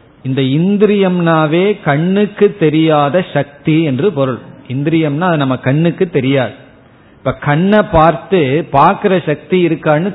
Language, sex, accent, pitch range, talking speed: Tamil, male, native, 140-180 Hz, 95 wpm